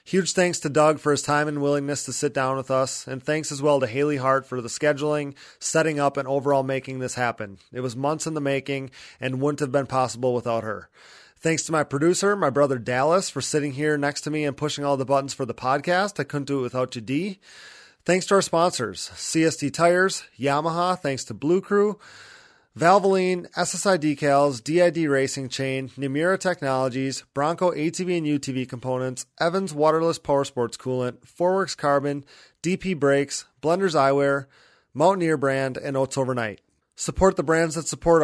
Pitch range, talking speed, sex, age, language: 135-165 Hz, 185 wpm, male, 30-49, English